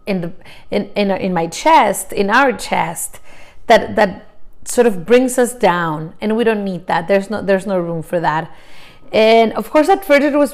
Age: 30-49